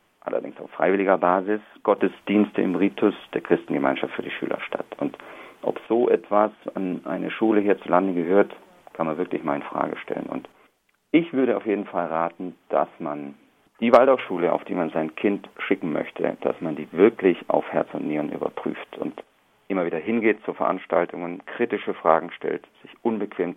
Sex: male